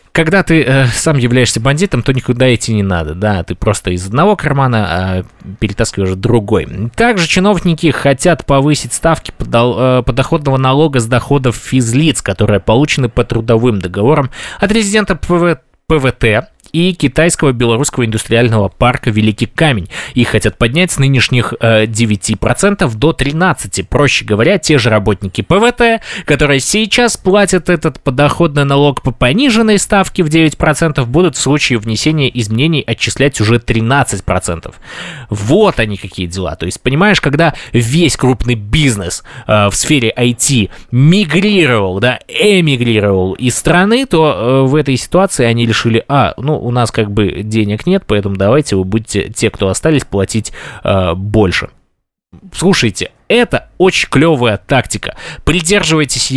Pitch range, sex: 110-155 Hz, male